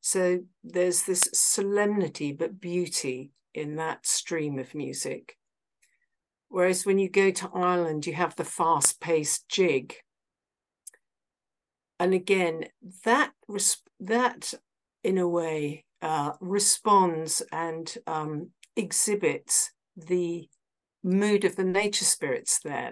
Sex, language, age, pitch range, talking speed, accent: female, English, 50-69, 160-205 Hz, 105 wpm, British